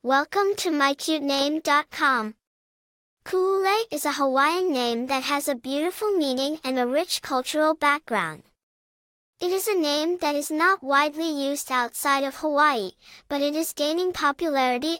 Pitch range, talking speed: 275-325 Hz, 140 wpm